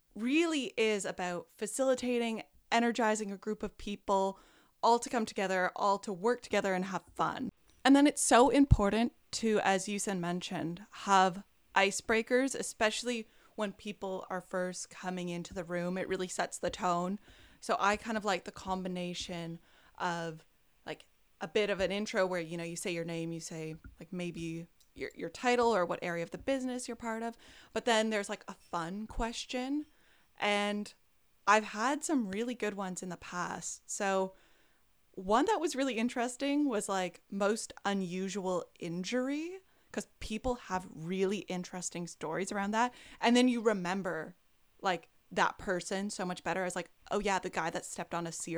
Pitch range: 180-230 Hz